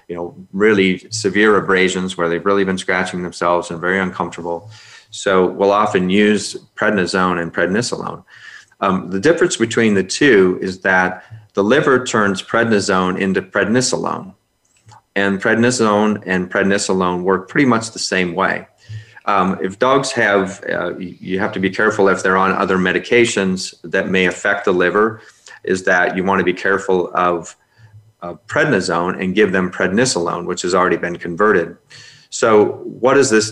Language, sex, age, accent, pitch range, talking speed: English, male, 30-49, American, 95-110 Hz, 155 wpm